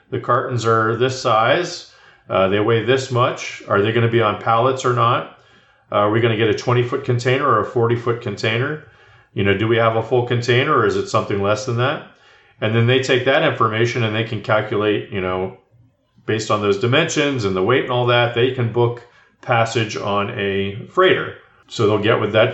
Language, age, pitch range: English, 40-59, 105-130 Hz